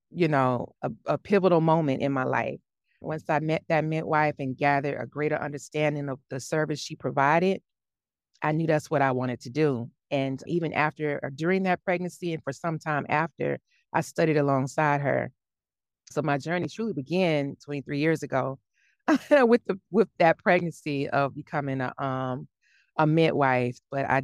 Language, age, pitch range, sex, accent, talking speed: English, 30-49, 135-160 Hz, female, American, 175 wpm